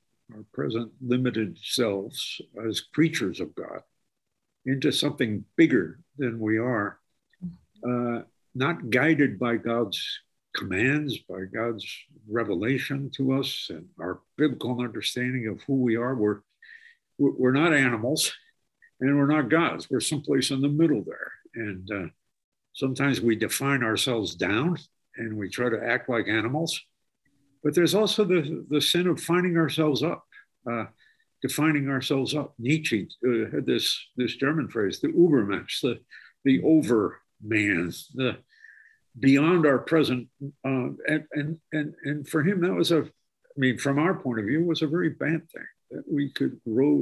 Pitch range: 125-155 Hz